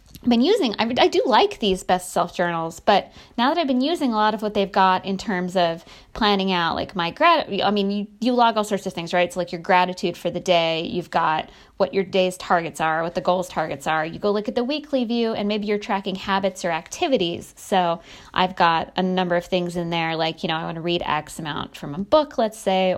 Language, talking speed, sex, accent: English, 250 wpm, female, American